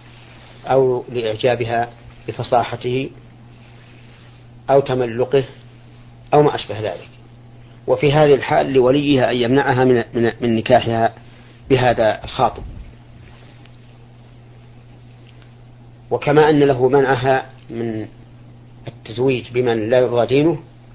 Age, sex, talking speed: 40-59, male, 80 wpm